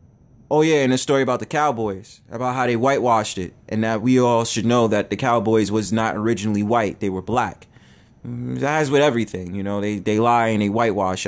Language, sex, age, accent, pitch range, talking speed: English, male, 20-39, American, 105-120 Hz, 215 wpm